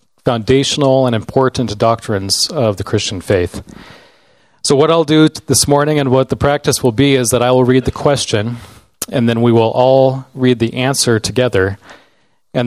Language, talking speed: English, 175 wpm